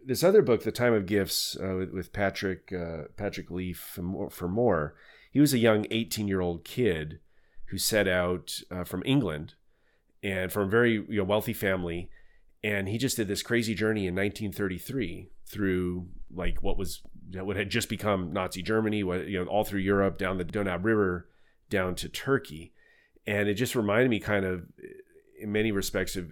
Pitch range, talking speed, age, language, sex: 95-120 Hz, 180 wpm, 30-49, English, male